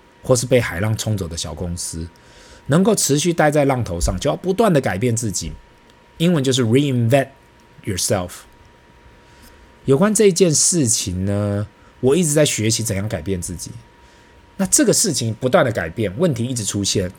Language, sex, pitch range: Chinese, male, 95-145 Hz